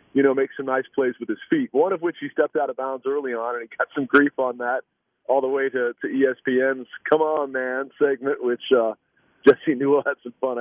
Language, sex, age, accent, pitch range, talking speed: English, male, 40-59, American, 115-150 Hz, 245 wpm